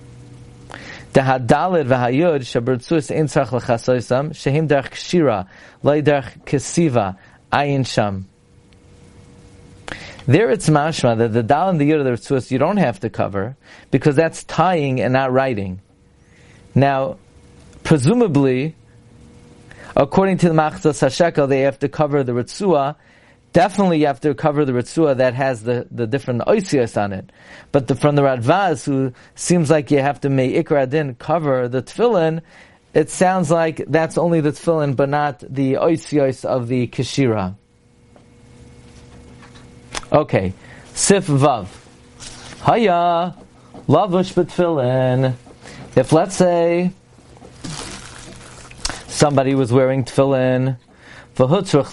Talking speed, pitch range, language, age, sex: 110 wpm, 120-155 Hz, English, 40-59, male